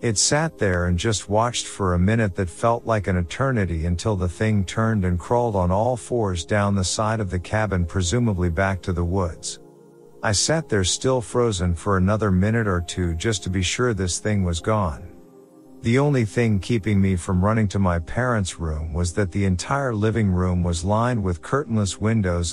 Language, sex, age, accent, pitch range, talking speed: English, male, 50-69, American, 90-115 Hz, 195 wpm